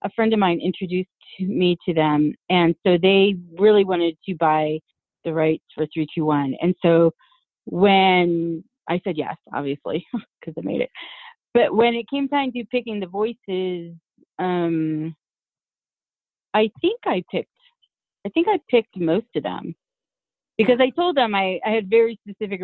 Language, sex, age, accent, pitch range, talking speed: English, female, 30-49, American, 160-215 Hz, 165 wpm